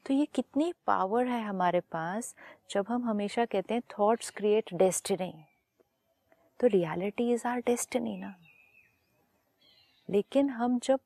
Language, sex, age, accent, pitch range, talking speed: Hindi, female, 30-49, native, 195-240 Hz, 130 wpm